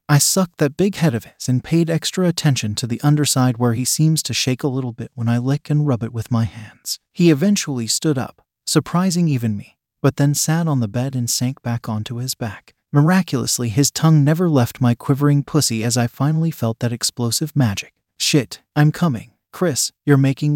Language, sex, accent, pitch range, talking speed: English, male, American, 120-155 Hz, 205 wpm